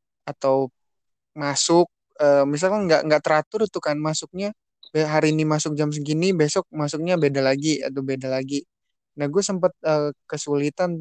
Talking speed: 135 wpm